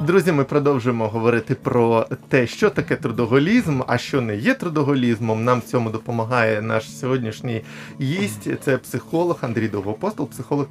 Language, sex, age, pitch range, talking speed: Ukrainian, male, 20-39, 115-140 Hz, 145 wpm